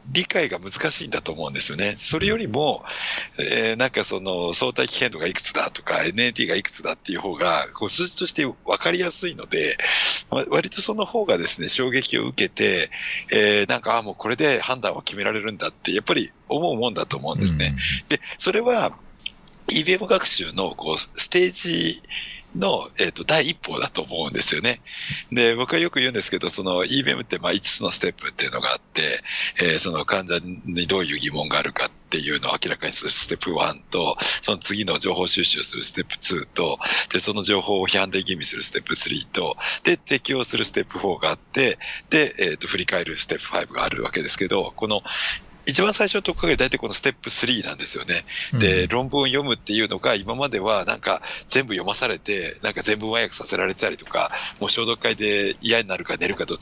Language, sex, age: Japanese, male, 60-79